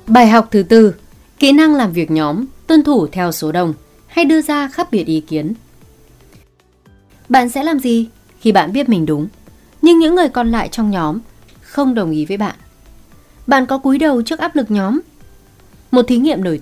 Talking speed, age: 195 wpm, 20-39